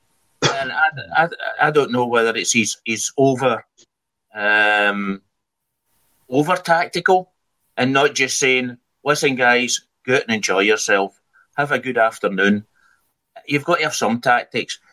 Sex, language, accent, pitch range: male, English, British, 105-125 Hz